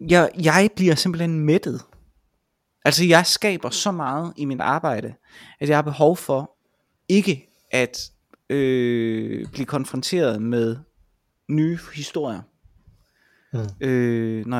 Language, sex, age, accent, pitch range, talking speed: Danish, male, 20-39, native, 125-170 Hz, 115 wpm